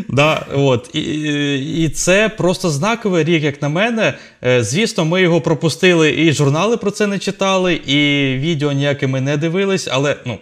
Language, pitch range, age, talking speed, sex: Ukrainian, 125-160 Hz, 20-39, 160 wpm, male